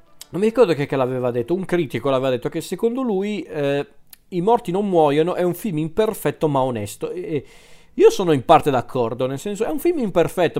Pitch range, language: 125-160 Hz, Italian